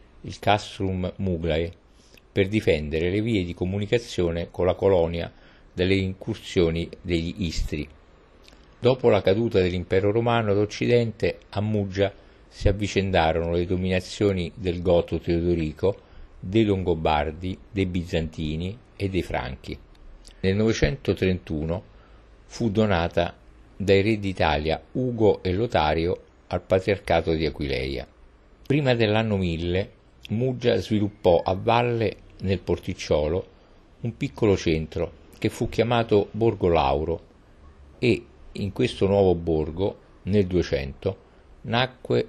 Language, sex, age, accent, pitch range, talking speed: Italian, male, 50-69, native, 80-105 Hz, 110 wpm